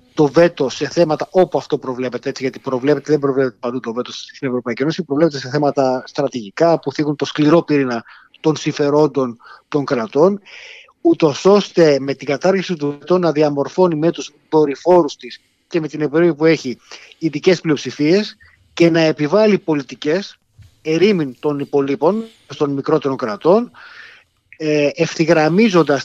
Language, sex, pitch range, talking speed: Greek, male, 140-170 Hz, 145 wpm